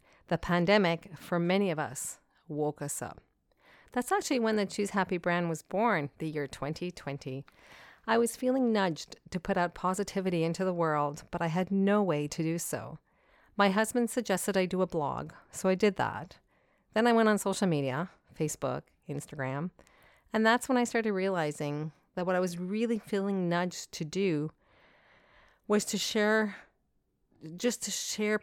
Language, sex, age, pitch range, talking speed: English, female, 40-59, 155-200 Hz, 170 wpm